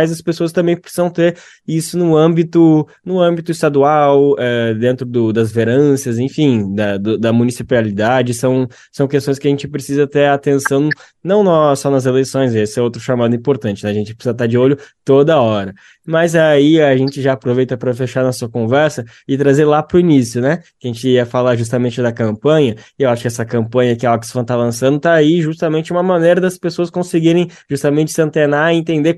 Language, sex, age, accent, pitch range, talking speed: Portuguese, male, 20-39, Brazilian, 130-170 Hz, 205 wpm